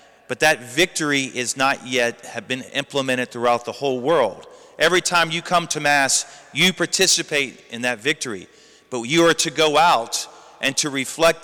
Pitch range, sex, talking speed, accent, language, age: 140-190 Hz, male, 175 wpm, American, English, 40-59